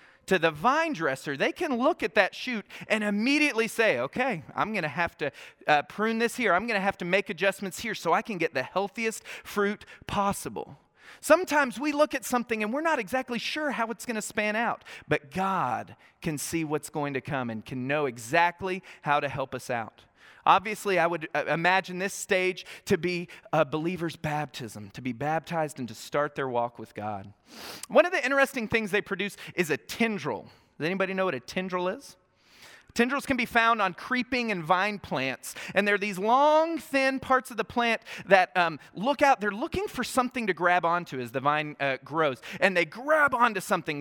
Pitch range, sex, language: 155-235 Hz, male, English